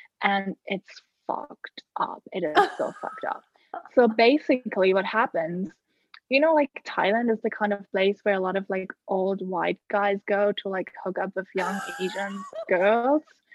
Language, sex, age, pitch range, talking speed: English, female, 10-29, 195-240 Hz, 175 wpm